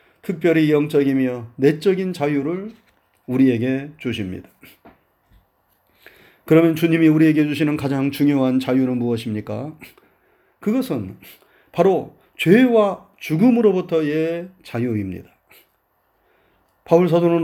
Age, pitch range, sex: 40-59, 145-195 Hz, male